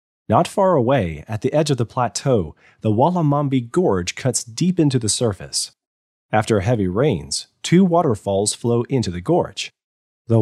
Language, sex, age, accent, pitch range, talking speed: English, male, 30-49, American, 105-140 Hz, 155 wpm